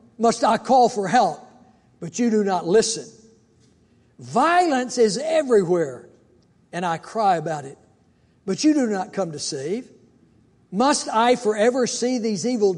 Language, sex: English, male